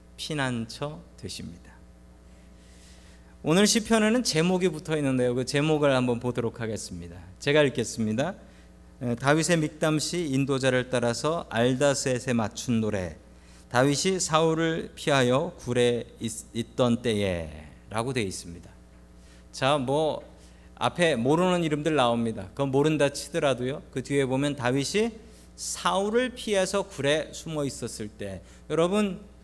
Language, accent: Korean, native